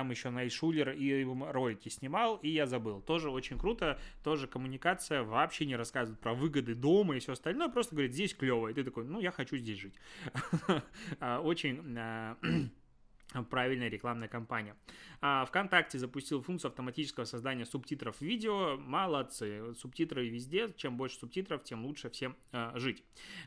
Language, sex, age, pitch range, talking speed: Russian, male, 20-39, 125-155 Hz, 145 wpm